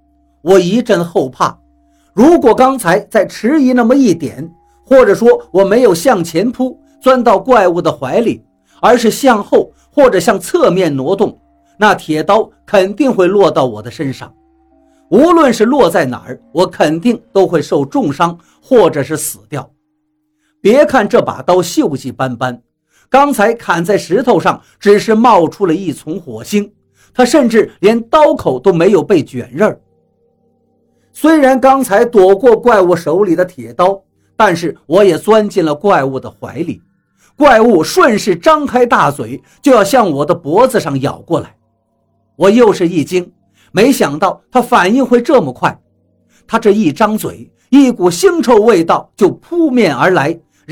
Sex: male